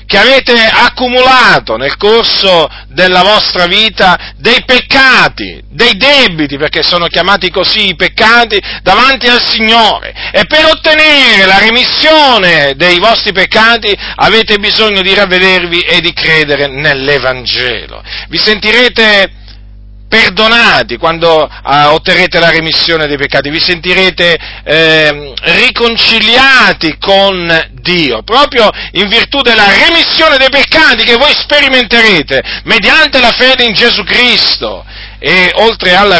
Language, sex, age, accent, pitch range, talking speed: Italian, male, 40-59, native, 165-245 Hz, 120 wpm